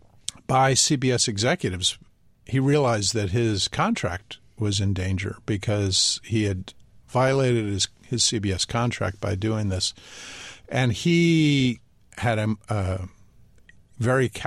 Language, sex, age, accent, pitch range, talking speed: English, male, 50-69, American, 100-125 Hz, 115 wpm